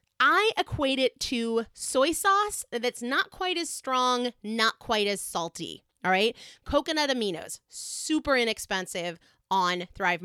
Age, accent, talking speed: 30-49, American, 135 wpm